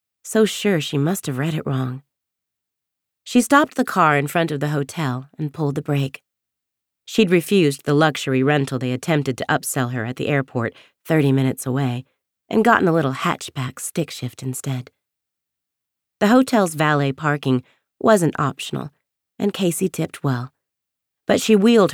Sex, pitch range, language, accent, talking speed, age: female, 135-180 Hz, English, American, 160 wpm, 30-49